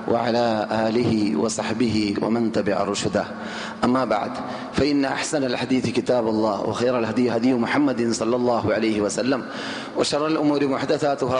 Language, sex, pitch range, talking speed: Malayalam, male, 125-155 Hz, 120 wpm